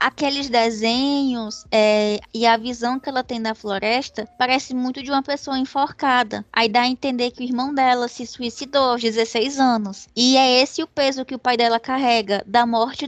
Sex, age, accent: female, 10-29, Brazilian